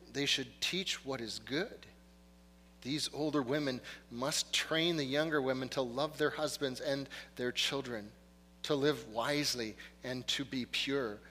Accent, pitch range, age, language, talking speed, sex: American, 115-180 Hz, 40-59, English, 150 wpm, male